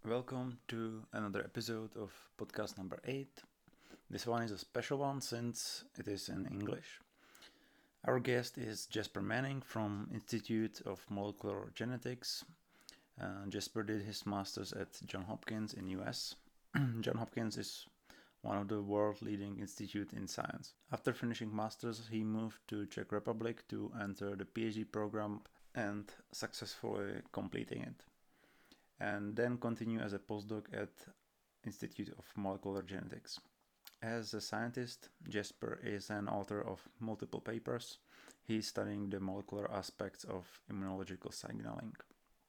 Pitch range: 100-115 Hz